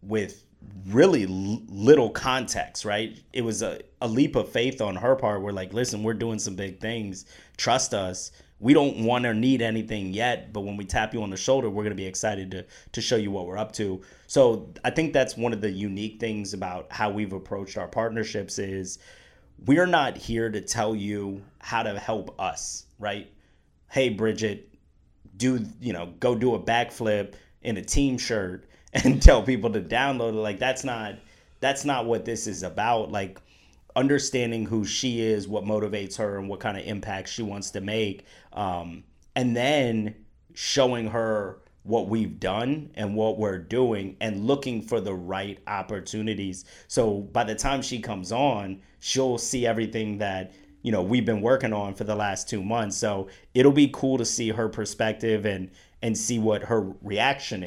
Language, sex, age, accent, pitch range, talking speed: English, male, 30-49, American, 100-115 Hz, 185 wpm